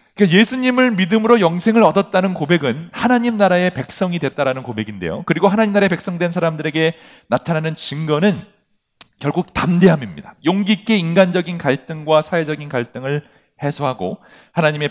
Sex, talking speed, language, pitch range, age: male, 110 wpm, English, 120-180 Hz, 40-59